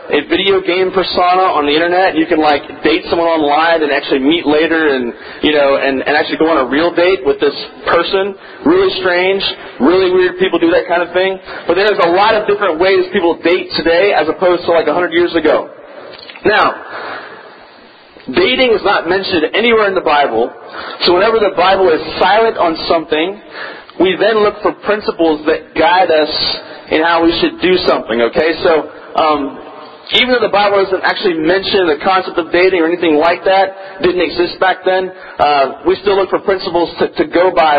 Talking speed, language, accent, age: 190 wpm, English, American, 40-59